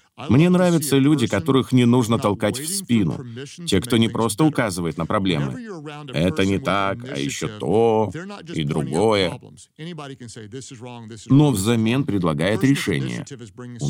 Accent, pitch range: native, 105-140 Hz